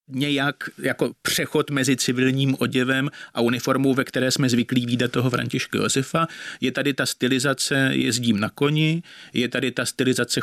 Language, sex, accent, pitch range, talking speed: Czech, male, native, 130-155 Hz, 155 wpm